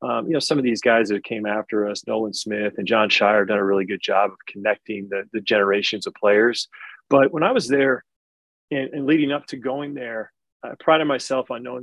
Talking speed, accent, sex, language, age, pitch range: 230 wpm, American, male, English, 30-49, 105-125 Hz